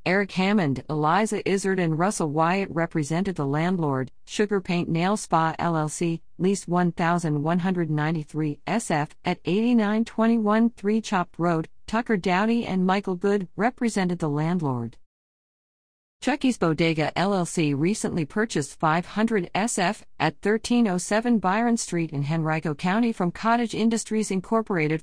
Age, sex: 50-69, female